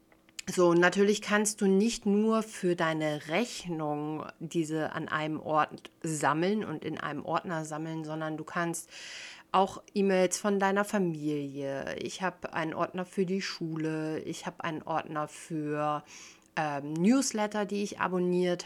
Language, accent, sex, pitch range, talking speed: German, German, female, 160-200 Hz, 140 wpm